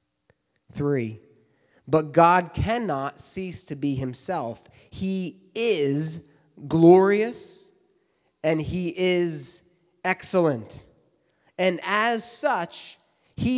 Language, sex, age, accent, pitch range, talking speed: English, male, 30-49, American, 135-190 Hz, 85 wpm